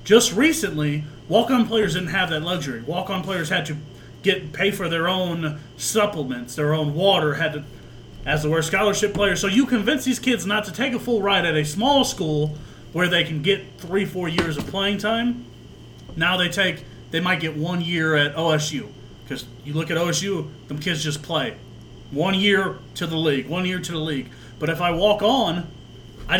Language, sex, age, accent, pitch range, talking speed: English, male, 30-49, American, 150-195 Hz, 205 wpm